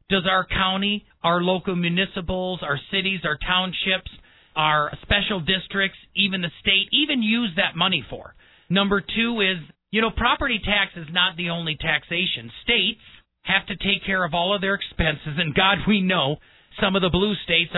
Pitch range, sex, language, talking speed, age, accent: 165-200 Hz, male, English, 175 wpm, 40-59, American